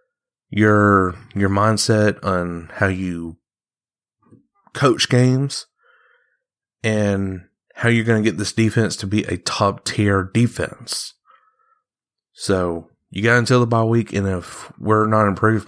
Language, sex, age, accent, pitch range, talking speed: English, male, 30-49, American, 100-140 Hz, 130 wpm